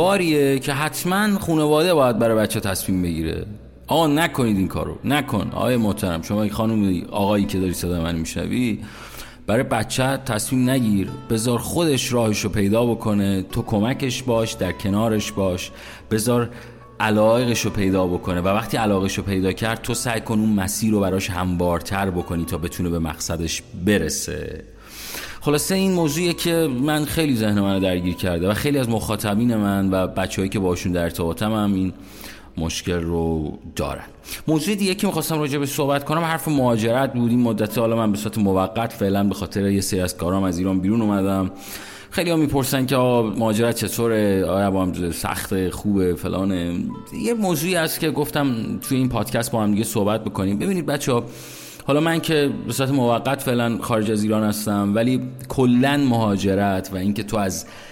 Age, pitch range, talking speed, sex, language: 30-49, 95-125 Hz, 165 wpm, male, Persian